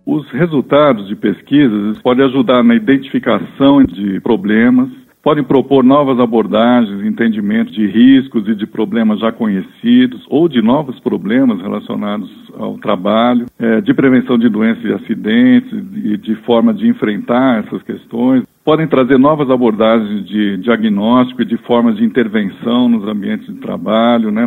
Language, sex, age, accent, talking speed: Portuguese, male, 60-79, Brazilian, 145 wpm